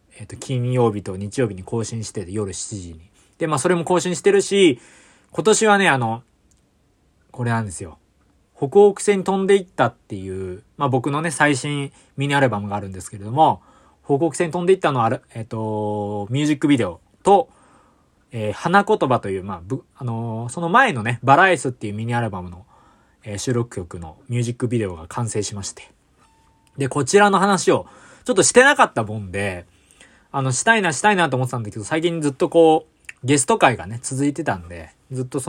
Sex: male